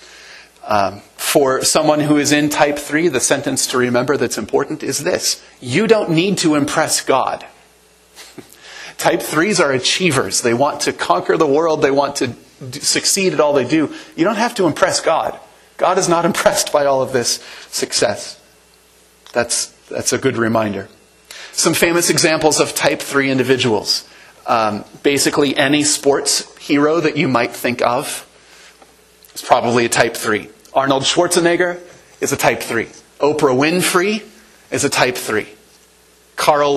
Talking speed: 155 wpm